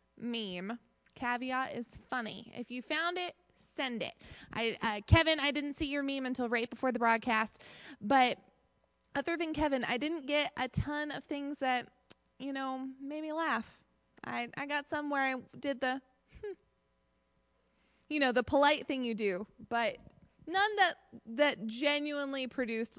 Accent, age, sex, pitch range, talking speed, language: American, 20-39, female, 235-310 Hz, 160 wpm, English